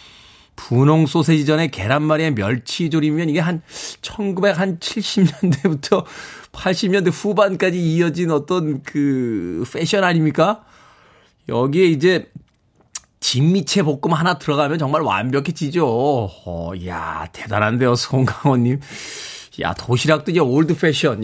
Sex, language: male, Korean